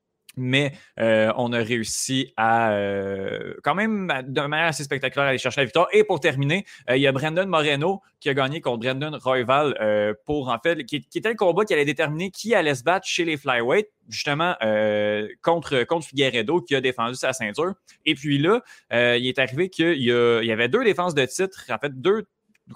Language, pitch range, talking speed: French, 120-170 Hz, 210 wpm